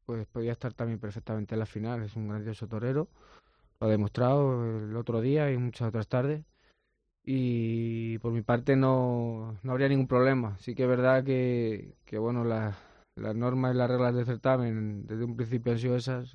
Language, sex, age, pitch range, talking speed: Spanish, male, 20-39, 110-130 Hz, 190 wpm